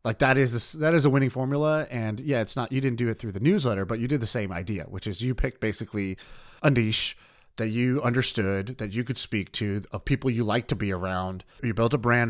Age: 30-49